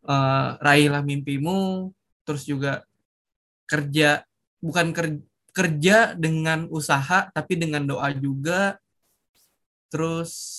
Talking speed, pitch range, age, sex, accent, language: 90 wpm, 145-165 Hz, 20-39, male, native, Indonesian